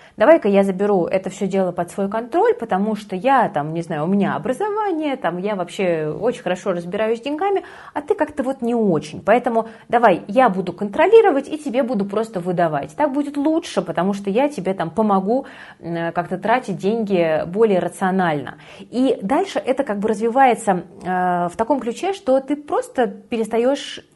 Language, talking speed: Russian, 170 wpm